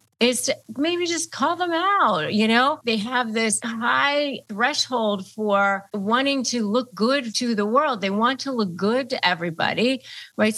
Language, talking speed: English, 170 wpm